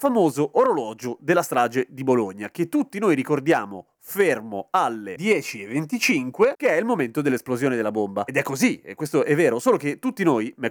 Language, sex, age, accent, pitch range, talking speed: Italian, male, 30-49, native, 120-180 Hz, 180 wpm